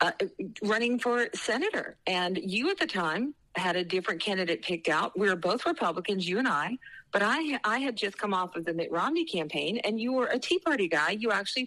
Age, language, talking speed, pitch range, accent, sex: 40-59, English, 220 wpm, 195-245 Hz, American, female